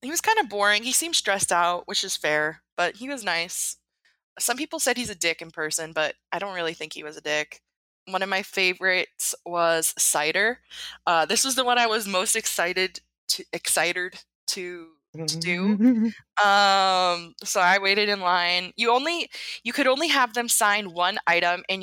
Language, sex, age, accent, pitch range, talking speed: English, female, 20-39, American, 170-225 Hz, 190 wpm